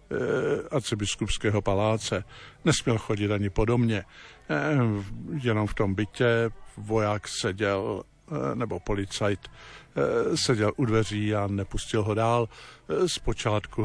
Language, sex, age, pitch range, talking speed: Slovak, male, 50-69, 105-120 Hz, 95 wpm